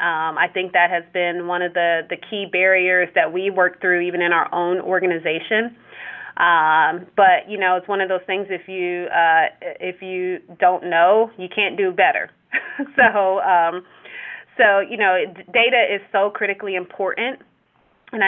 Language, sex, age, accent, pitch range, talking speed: English, female, 30-49, American, 175-205 Hz, 170 wpm